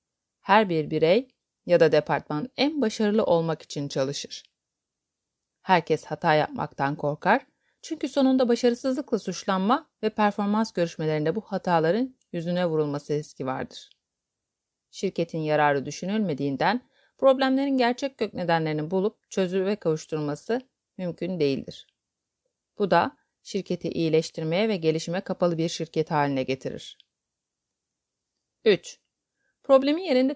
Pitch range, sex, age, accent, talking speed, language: 155-230 Hz, female, 30-49, native, 110 wpm, Turkish